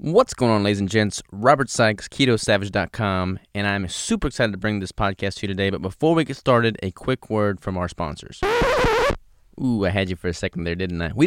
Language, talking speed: English, 225 wpm